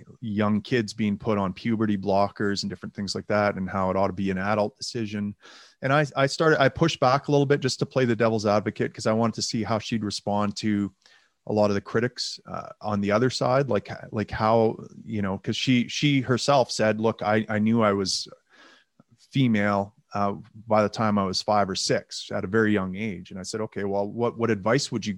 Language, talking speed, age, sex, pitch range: English, 230 wpm, 30-49, male, 100-115 Hz